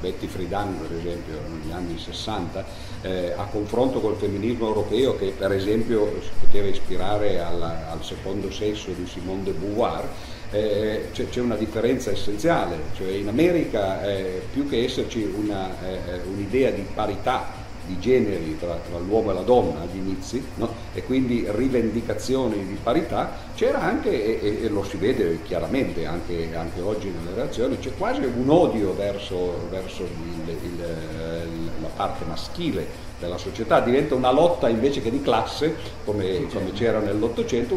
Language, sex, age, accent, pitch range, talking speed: Italian, male, 50-69, native, 90-115 Hz, 145 wpm